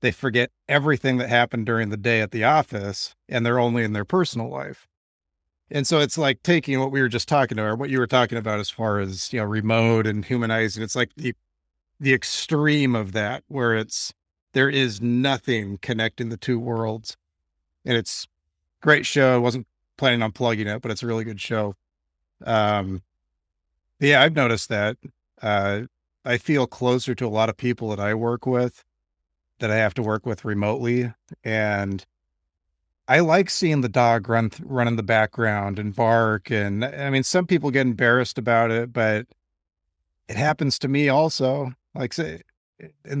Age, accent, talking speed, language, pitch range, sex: 40-59, American, 185 wpm, English, 105-130 Hz, male